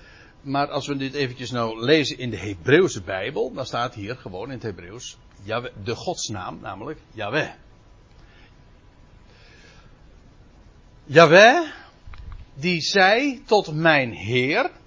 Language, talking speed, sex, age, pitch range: Dutch, 115 wpm, male, 60-79, 115-185 Hz